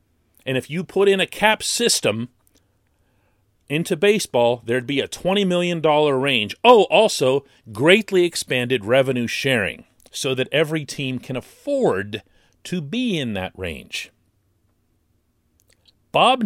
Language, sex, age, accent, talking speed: English, male, 40-59, American, 125 wpm